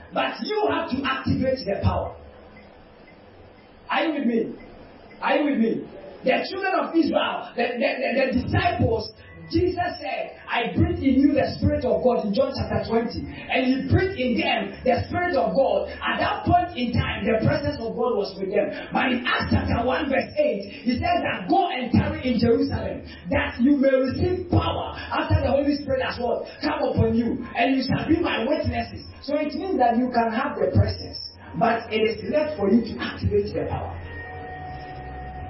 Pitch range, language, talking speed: 180-280 Hz, English, 190 wpm